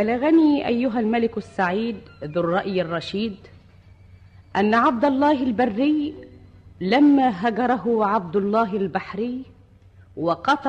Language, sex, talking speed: Arabic, female, 95 wpm